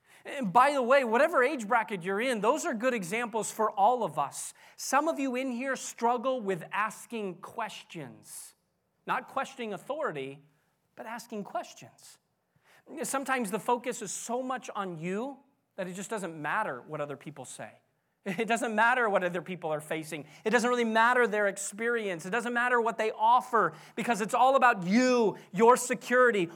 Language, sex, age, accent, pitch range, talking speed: English, male, 30-49, American, 160-230 Hz, 170 wpm